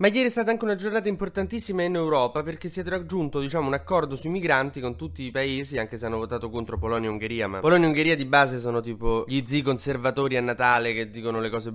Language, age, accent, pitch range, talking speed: Italian, 20-39, native, 115-145 Hz, 245 wpm